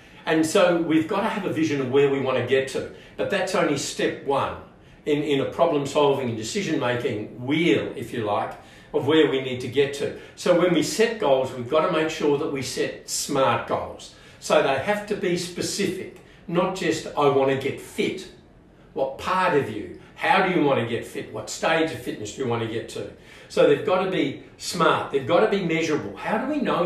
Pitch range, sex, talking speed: 130-170 Hz, male, 230 wpm